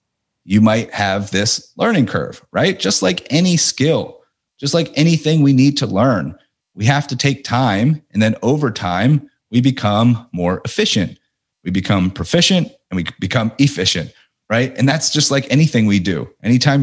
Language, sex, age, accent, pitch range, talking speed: English, male, 30-49, American, 110-140 Hz, 170 wpm